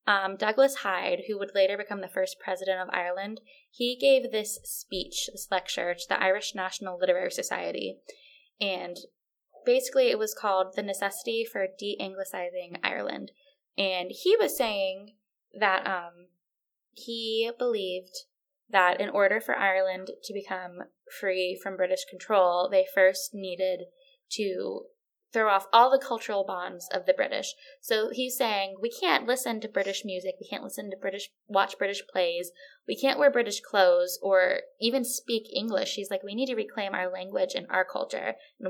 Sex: female